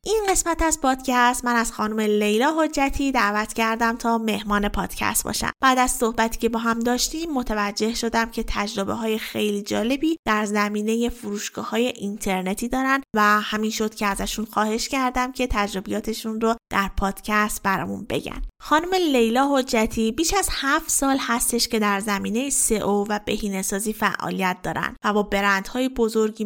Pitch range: 205-255 Hz